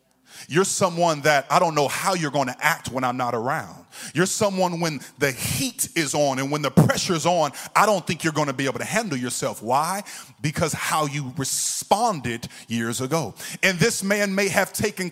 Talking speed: 205 wpm